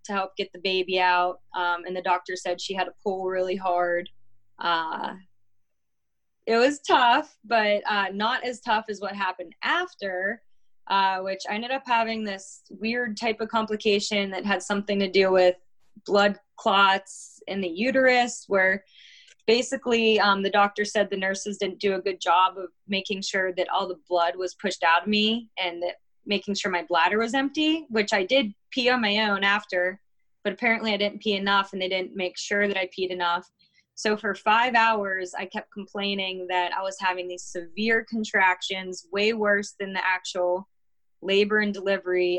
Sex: female